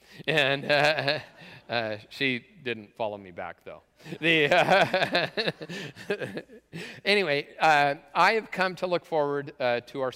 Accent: American